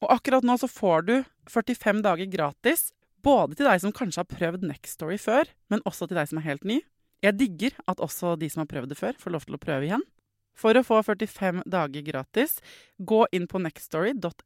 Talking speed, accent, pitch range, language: 210 wpm, Swedish, 165-225 Hz, English